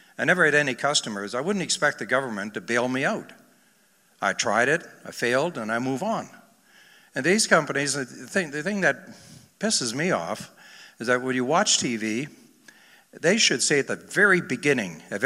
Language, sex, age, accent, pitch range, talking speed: English, male, 60-79, American, 115-150 Hz, 190 wpm